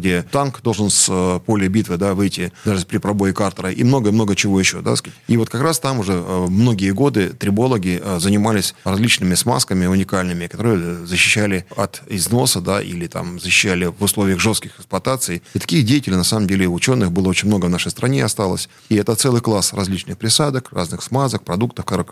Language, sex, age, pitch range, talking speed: Russian, male, 20-39, 95-120 Hz, 185 wpm